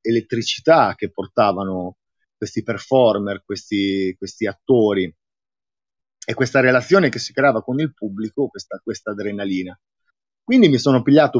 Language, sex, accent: Italian, male, native